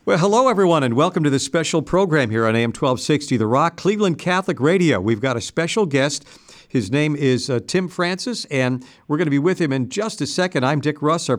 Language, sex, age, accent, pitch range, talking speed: English, male, 60-79, American, 130-170 Hz, 230 wpm